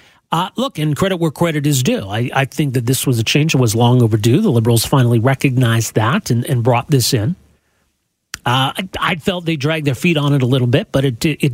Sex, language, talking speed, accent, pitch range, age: male, English, 250 wpm, American, 120-150 Hz, 40-59